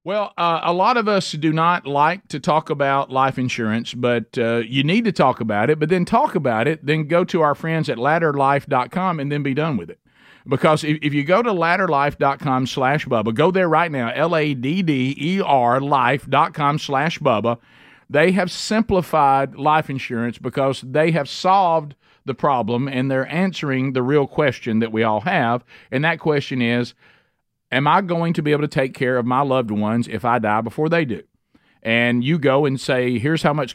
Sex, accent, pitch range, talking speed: male, American, 125-165 Hz, 195 wpm